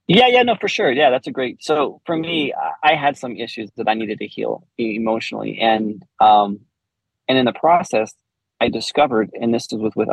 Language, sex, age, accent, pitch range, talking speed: English, male, 30-49, American, 110-130 Hz, 200 wpm